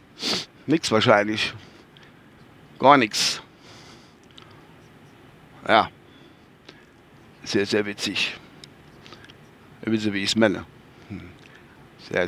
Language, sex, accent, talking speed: German, male, German, 75 wpm